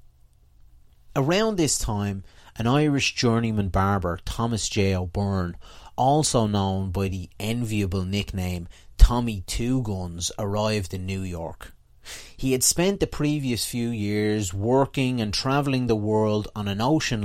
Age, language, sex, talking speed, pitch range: 30-49, English, male, 130 wpm, 95-120 Hz